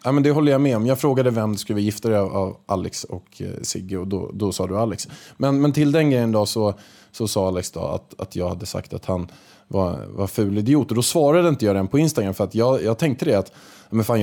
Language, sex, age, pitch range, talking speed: Swedish, male, 20-39, 95-130 Hz, 260 wpm